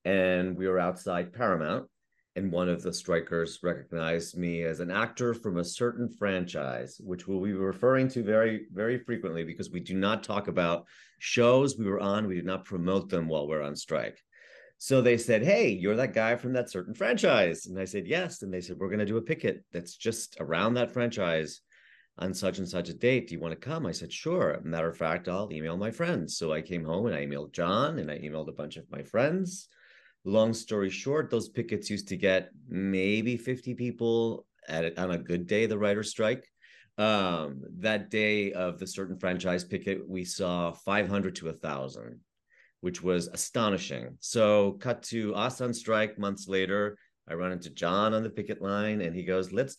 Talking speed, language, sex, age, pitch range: 205 wpm, English, male, 40-59, 90-115 Hz